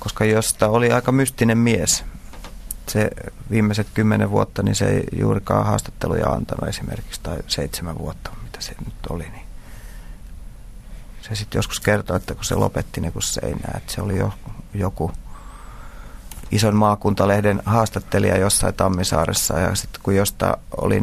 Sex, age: male, 30-49